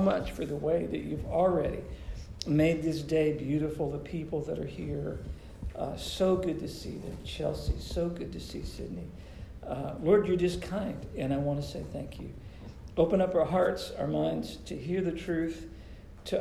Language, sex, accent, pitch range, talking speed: English, male, American, 130-180 Hz, 185 wpm